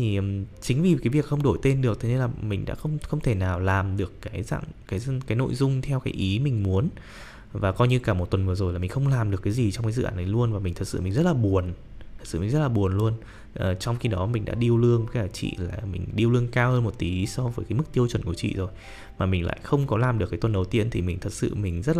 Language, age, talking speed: Vietnamese, 20-39, 305 wpm